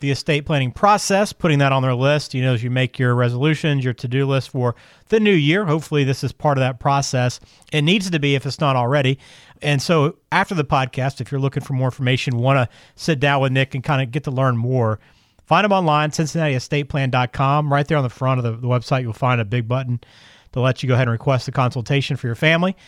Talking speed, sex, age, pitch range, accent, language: 240 wpm, male, 40-59, 125-150 Hz, American, English